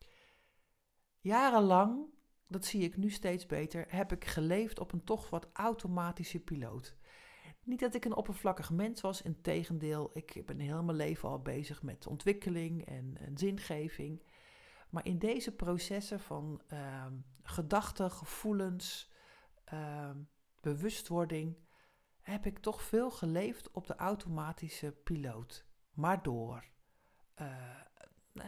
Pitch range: 155-200 Hz